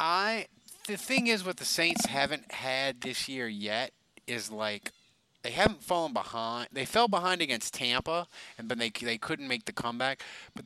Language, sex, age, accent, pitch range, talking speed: English, male, 30-49, American, 115-165 Hz, 180 wpm